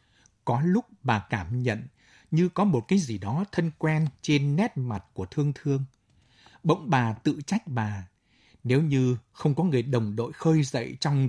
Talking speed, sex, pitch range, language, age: 180 wpm, male, 115-155 Hz, Vietnamese, 60-79